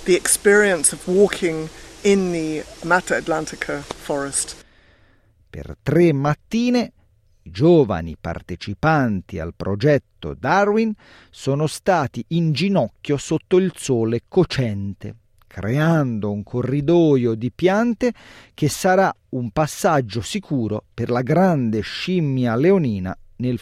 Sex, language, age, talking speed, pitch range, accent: male, Italian, 40-59, 105 wpm, 105-175 Hz, native